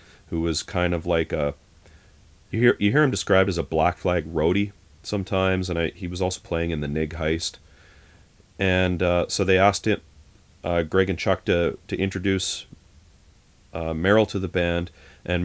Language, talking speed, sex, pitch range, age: English, 185 wpm, male, 80-95 Hz, 30-49